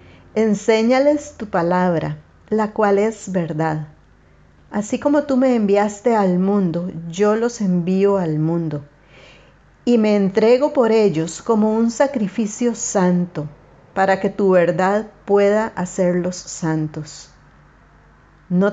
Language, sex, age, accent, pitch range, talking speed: Spanish, female, 40-59, American, 160-215 Hz, 115 wpm